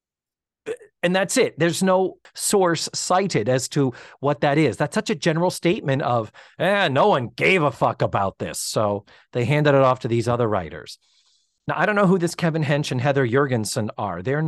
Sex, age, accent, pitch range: male, 40-59, American, 120-170 Hz